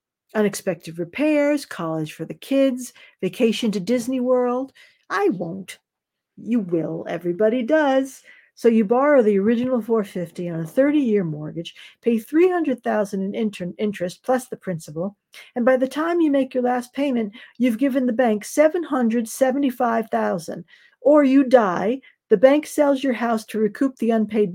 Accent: American